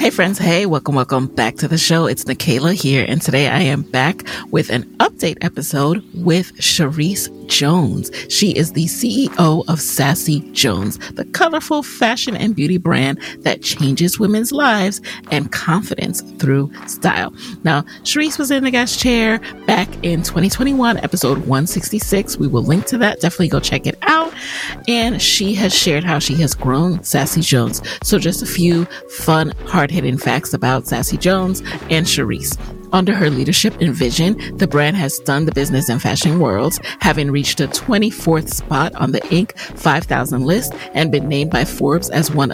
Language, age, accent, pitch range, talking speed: English, 30-49, American, 145-205 Hz, 170 wpm